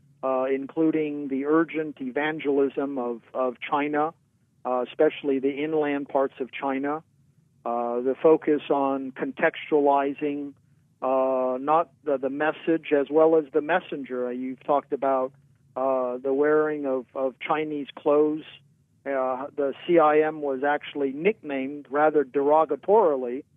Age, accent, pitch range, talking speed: 50-69, American, 135-155 Hz, 120 wpm